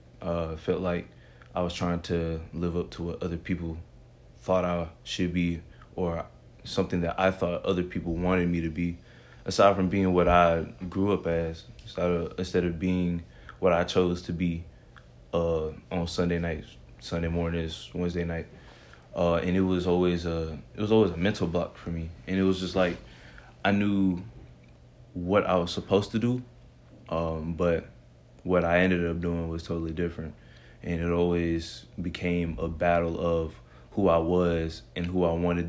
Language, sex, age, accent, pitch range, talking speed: English, male, 20-39, American, 80-90 Hz, 175 wpm